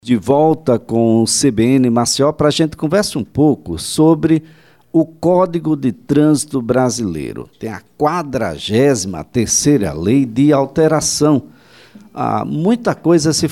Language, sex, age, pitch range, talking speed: Portuguese, male, 60-79, 115-160 Hz, 125 wpm